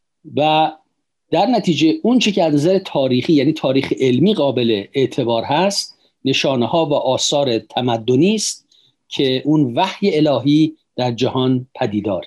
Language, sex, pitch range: Persian, male, 125-155 Hz